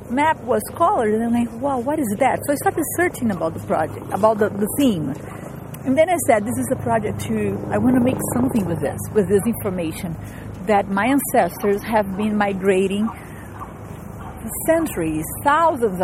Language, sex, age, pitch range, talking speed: English, female, 40-59, 195-240 Hz, 185 wpm